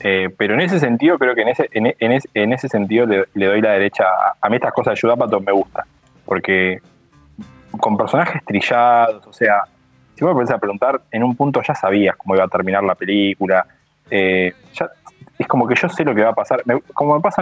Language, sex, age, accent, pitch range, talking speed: Spanish, male, 20-39, Argentinian, 95-115 Hz, 230 wpm